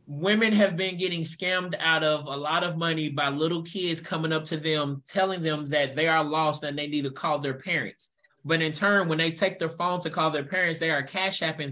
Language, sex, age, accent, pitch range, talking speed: English, male, 20-39, American, 145-175 Hz, 240 wpm